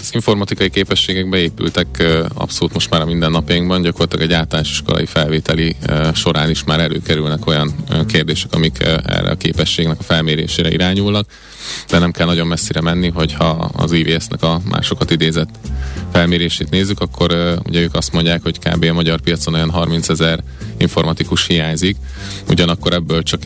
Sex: male